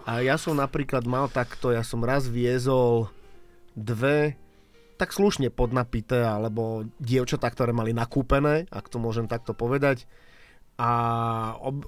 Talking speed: 130 wpm